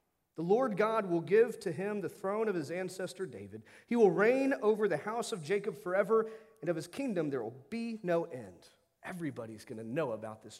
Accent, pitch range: American, 120-185 Hz